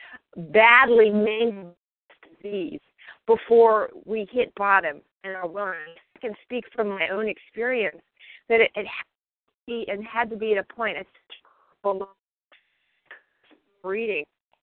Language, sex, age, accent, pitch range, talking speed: English, female, 50-69, American, 215-295 Hz, 115 wpm